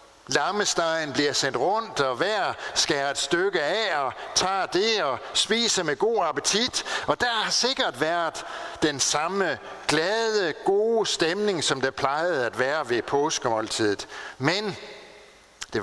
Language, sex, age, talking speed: Danish, male, 60-79, 140 wpm